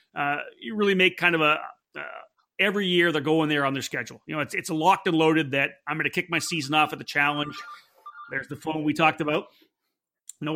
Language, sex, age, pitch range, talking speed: English, male, 40-59, 150-195 Hz, 235 wpm